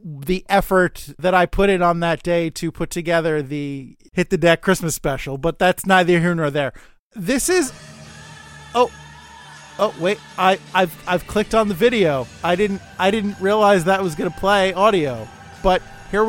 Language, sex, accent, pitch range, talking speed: English, male, American, 170-215 Hz, 180 wpm